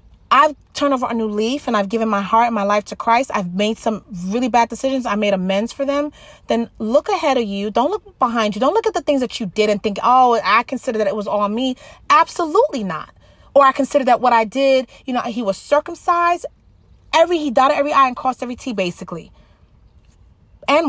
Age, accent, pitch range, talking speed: 30-49, American, 215-275 Hz, 225 wpm